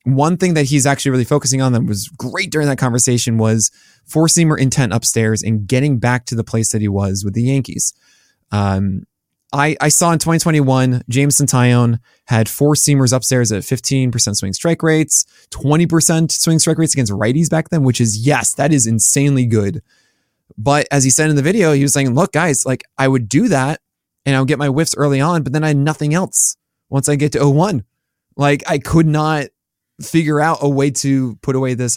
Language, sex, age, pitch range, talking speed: English, male, 20-39, 115-145 Hz, 205 wpm